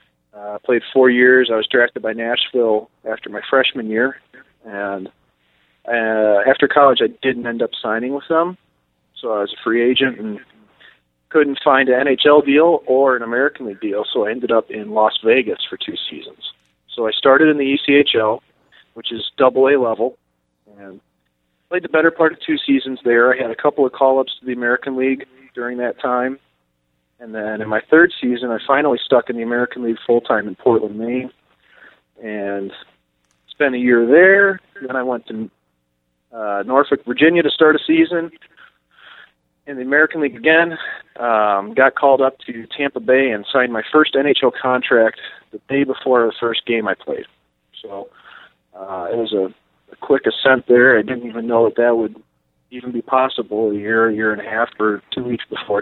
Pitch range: 105-135 Hz